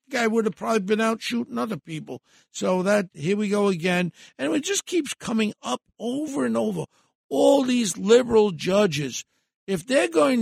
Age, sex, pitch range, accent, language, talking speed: 60-79, male, 160-200 Hz, American, English, 185 wpm